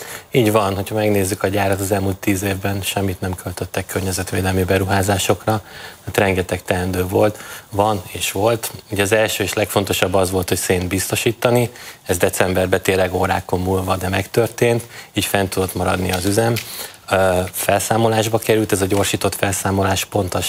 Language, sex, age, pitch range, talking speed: Hungarian, male, 20-39, 95-105 Hz, 155 wpm